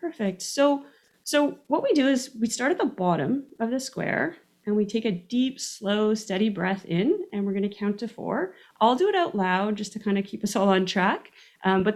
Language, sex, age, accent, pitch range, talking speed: English, female, 30-49, American, 185-245 Hz, 235 wpm